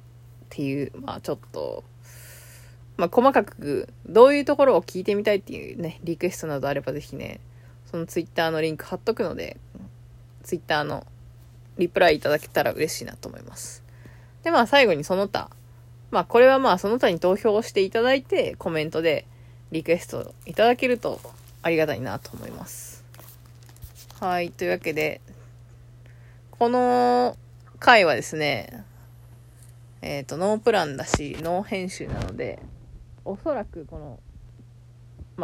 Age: 20-39